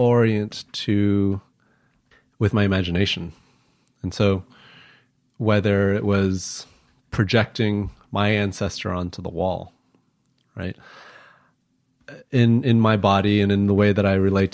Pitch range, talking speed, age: 95-110 Hz, 115 wpm, 30-49